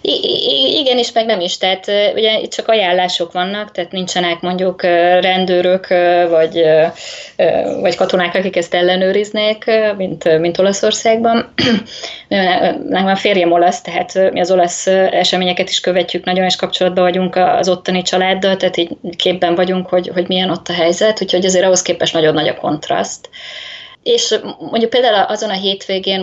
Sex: female